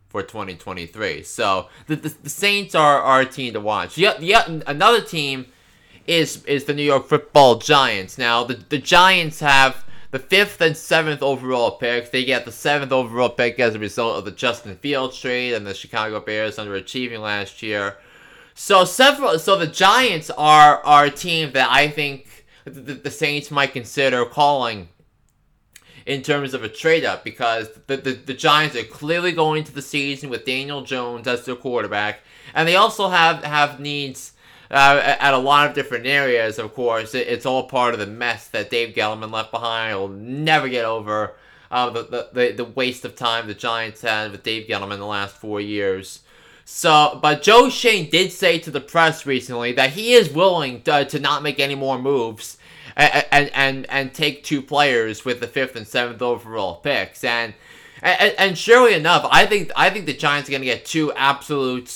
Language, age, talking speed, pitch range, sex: English, 20-39, 190 wpm, 115-150 Hz, male